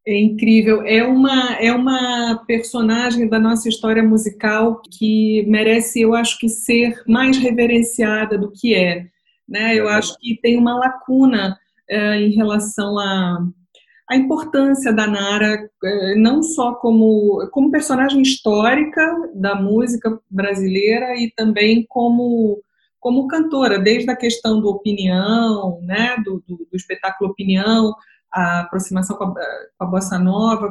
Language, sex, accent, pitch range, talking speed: Portuguese, female, Brazilian, 200-240 Hz, 140 wpm